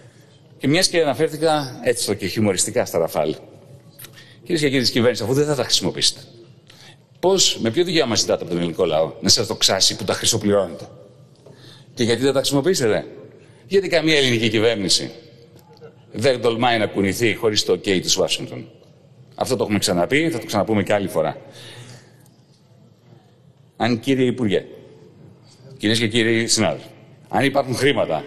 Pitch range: 120-150 Hz